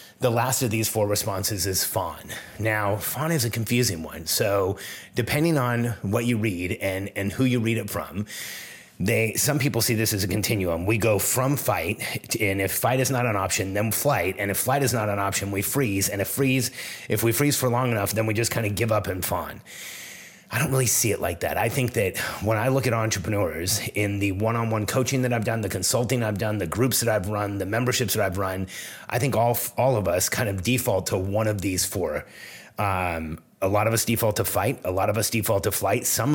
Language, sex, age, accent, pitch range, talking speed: English, male, 30-49, American, 100-120 Hz, 235 wpm